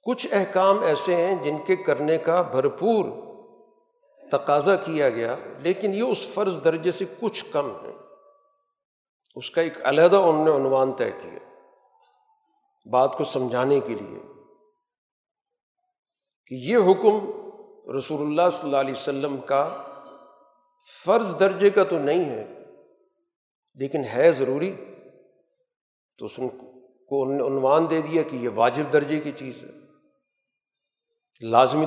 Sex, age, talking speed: male, 50-69, 130 wpm